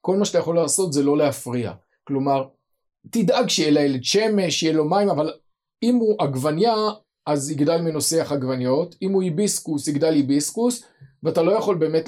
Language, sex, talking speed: Hebrew, male, 165 wpm